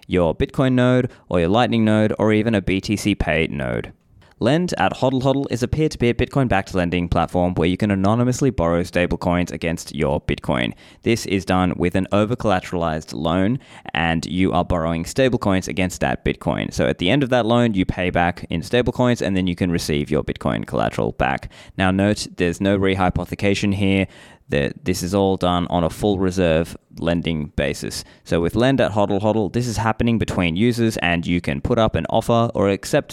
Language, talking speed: English, 195 wpm